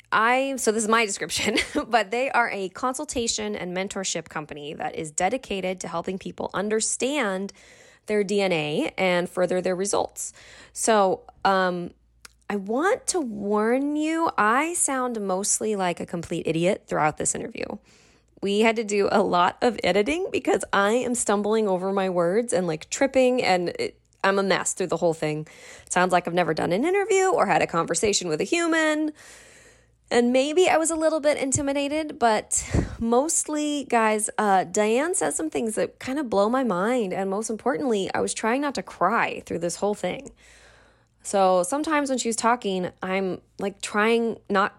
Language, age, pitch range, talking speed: English, 20-39, 185-255 Hz, 175 wpm